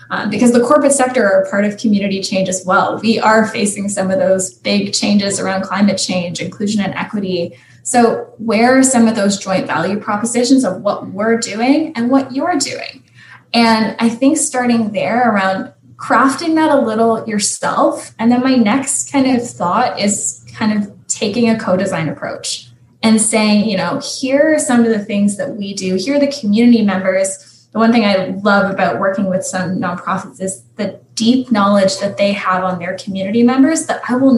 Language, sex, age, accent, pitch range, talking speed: English, female, 10-29, American, 190-245 Hz, 190 wpm